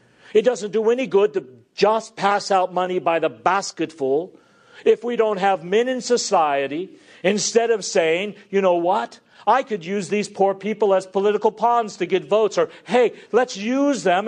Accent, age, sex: American, 50-69, male